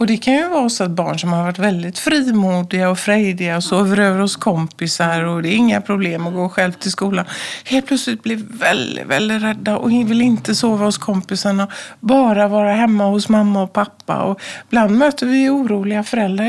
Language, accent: Swedish, native